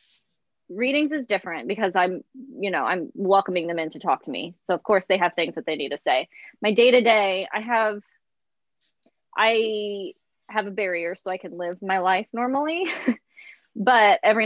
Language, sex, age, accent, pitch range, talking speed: English, female, 20-39, American, 175-215 Hz, 180 wpm